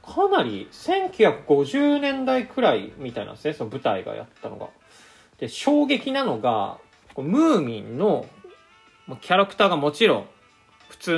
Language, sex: Japanese, male